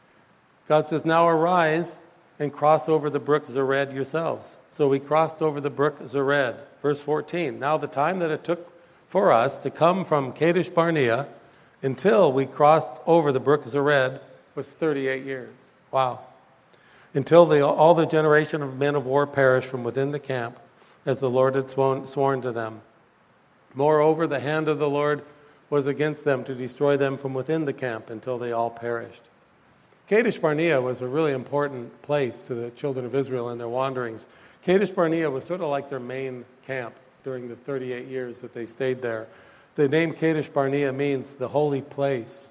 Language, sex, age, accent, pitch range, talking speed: English, male, 50-69, American, 130-160 Hz, 175 wpm